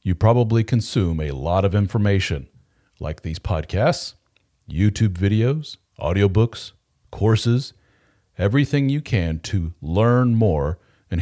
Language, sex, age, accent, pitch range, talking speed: English, male, 40-59, American, 90-120 Hz, 110 wpm